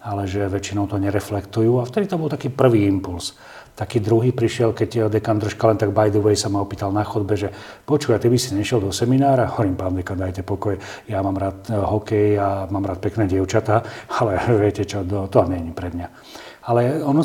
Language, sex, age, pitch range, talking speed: Slovak, male, 40-59, 100-115 Hz, 215 wpm